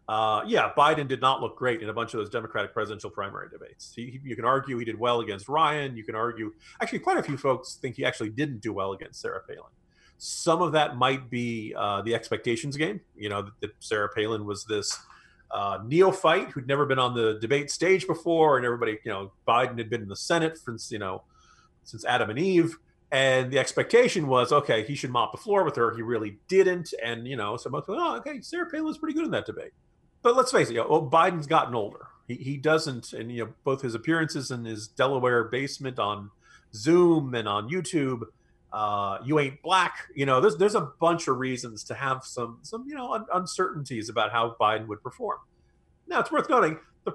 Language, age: English, 40-59